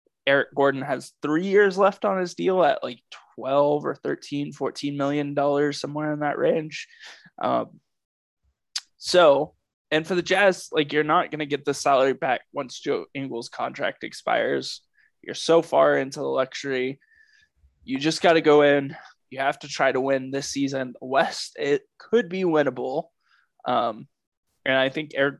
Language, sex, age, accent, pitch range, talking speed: English, male, 20-39, American, 135-165 Hz, 165 wpm